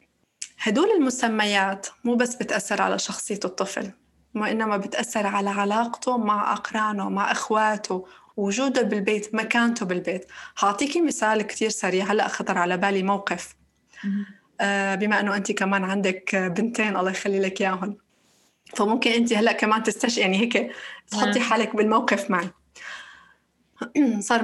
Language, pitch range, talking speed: Arabic, 205-245 Hz, 130 wpm